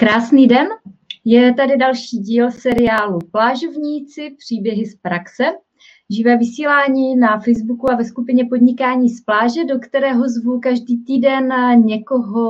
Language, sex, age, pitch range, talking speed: Czech, female, 30-49, 210-255 Hz, 130 wpm